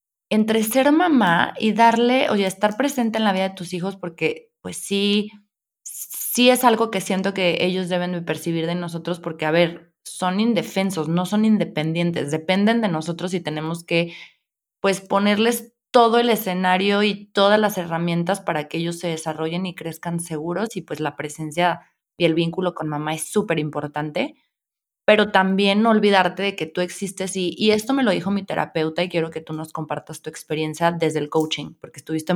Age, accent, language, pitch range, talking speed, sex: 20-39, Mexican, Spanish, 160-200 Hz, 185 wpm, female